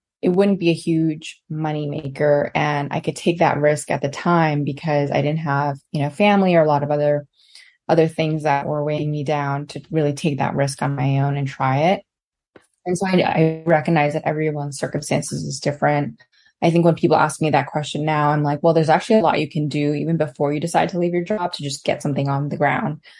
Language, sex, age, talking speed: English, female, 20-39, 235 wpm